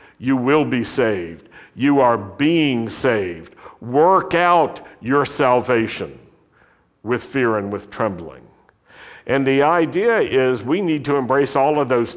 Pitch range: 105-140 Hz